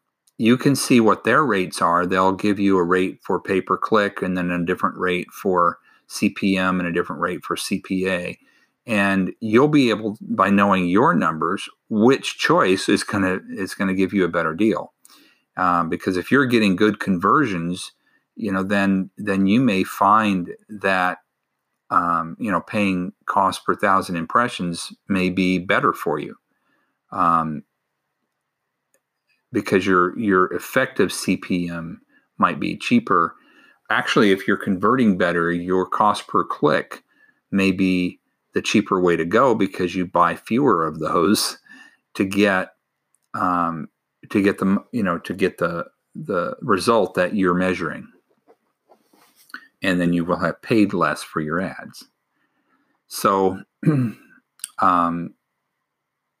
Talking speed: 145 wpm